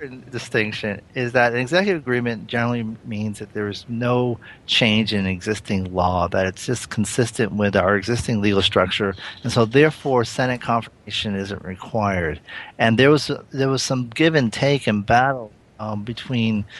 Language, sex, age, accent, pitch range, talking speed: English, male, 40-59, American, 100-120 Hz, 160 wpm